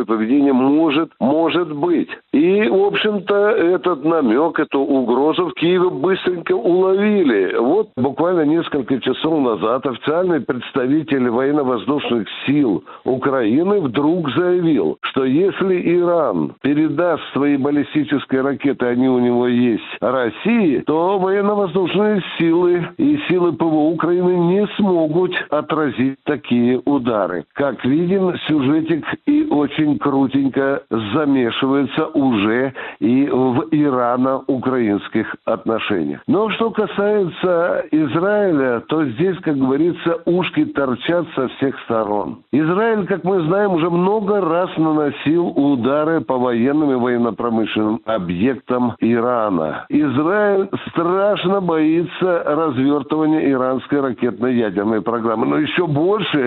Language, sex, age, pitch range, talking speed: Russian, male, 60-79, 135-190 Hz, 105 wpm